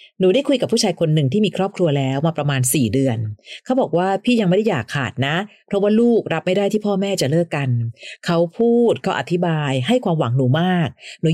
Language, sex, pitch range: Thai, female, 140-195 Hz